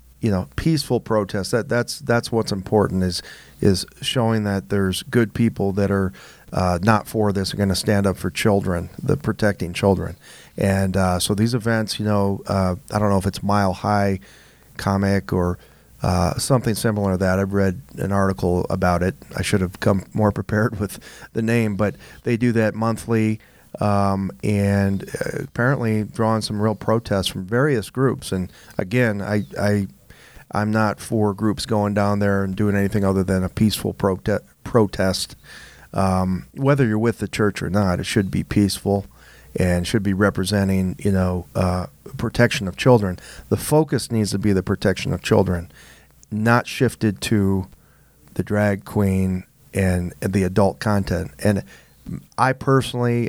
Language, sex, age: English, male, 40-59